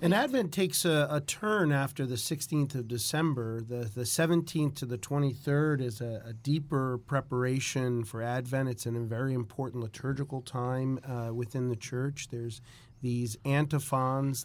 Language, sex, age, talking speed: English, male, 40-59, 160 wpm